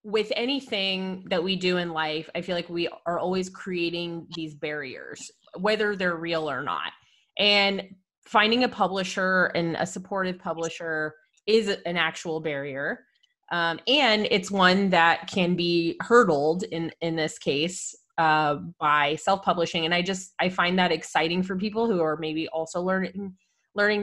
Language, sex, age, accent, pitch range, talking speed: English, female, 20-39, American, 165-205 Hz, 155 wpm